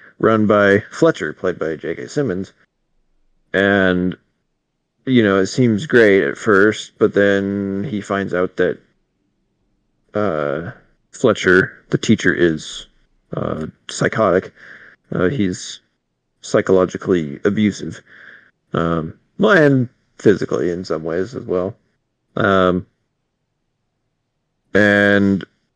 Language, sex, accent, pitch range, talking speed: English, male, American, 95-120 Hz, 100 wpm